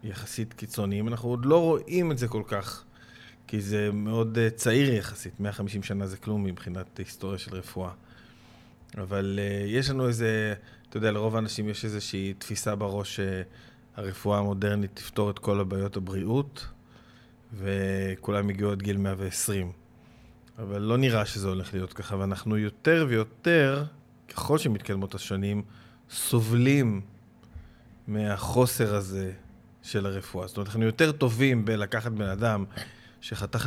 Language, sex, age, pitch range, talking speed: Hebrew, male, 20-39, 100-120 Hz, 130 wpm